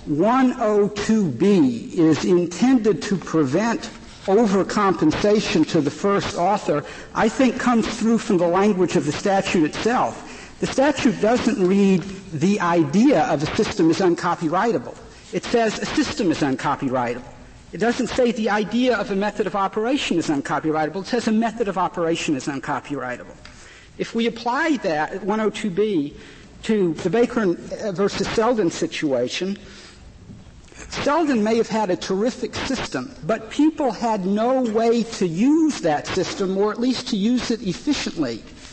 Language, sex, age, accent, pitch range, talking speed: English, male, 60-79, American, 190-255 Hz, 145 wpm